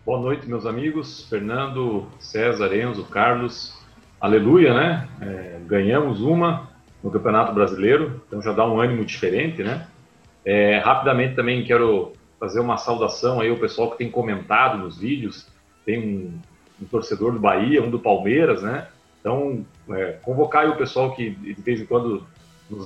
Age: 40-59